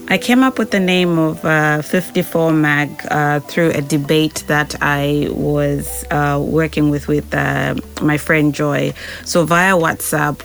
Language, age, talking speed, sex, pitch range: English, 20-39, 160 wpm, female, 145-160 Hz